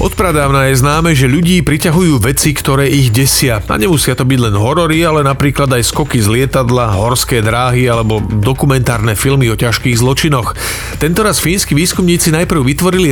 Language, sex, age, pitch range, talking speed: Slovak, male, 40-59, 120-150 Hz, 160 wpm